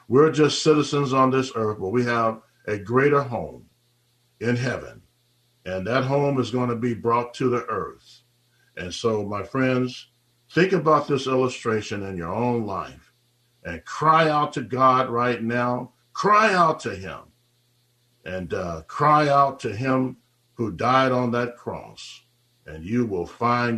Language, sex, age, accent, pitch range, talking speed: English, male, 50-69, American, 100-130 Hz, 160 wpm